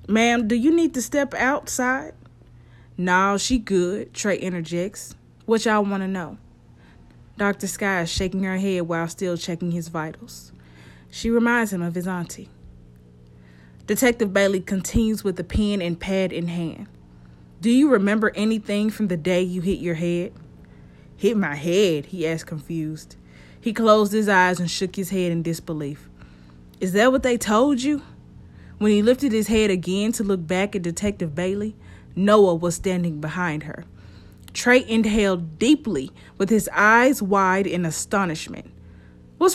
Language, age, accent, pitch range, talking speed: English, 20-39, American, 155-210 Hz, 160 wpm